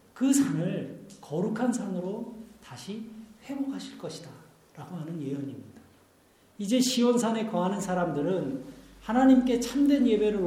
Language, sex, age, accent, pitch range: Korean, male, 40-59, native, 150-230 Hz